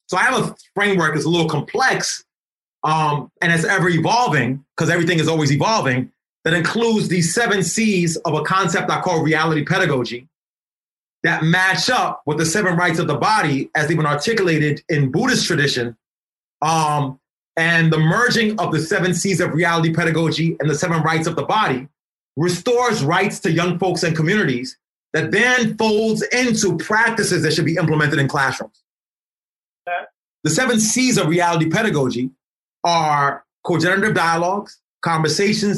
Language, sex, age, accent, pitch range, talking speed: English, male, 30-49, American, 155-205 Hz, 155 wpm